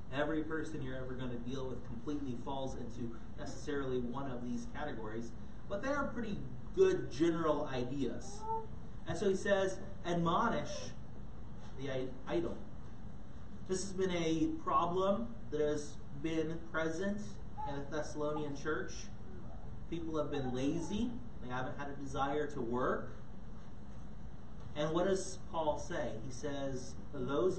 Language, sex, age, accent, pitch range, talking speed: English, male, 30-49, American, 125-175 Hz, 135 wpm